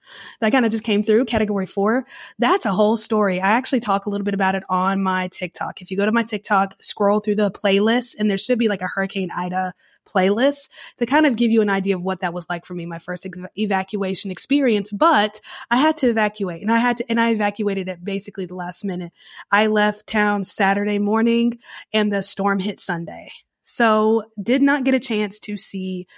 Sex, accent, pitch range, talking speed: female, American, 195-240 Hz, 220 wpm